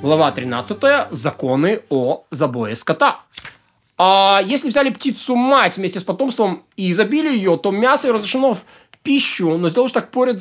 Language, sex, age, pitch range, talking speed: Russian, male, 20-39, 175-235 Hz, 150 wpm